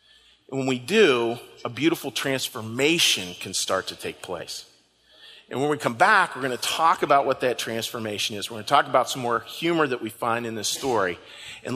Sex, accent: male, American